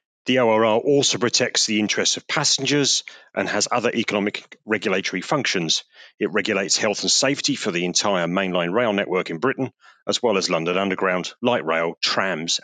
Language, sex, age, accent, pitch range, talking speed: English, male, 40-59, British, 90-125 Hz, 165 wpm